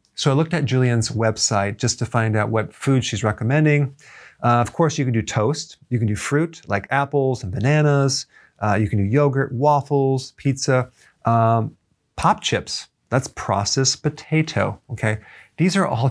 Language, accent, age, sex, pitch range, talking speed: English, American, 40-59, male, 110-145 Hz, 170 wpm